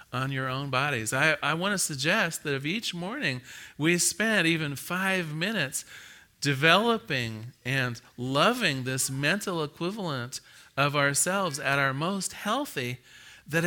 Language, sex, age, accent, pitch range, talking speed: English, male, 40-59, American, 130-185 Hz, 135 wpm